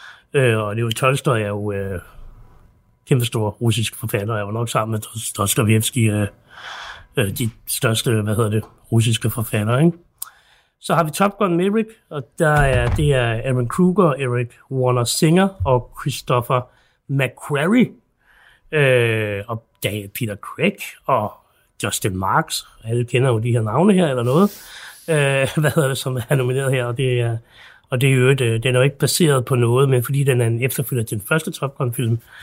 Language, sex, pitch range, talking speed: Danish, male, 115-150 Hz, 175 wpm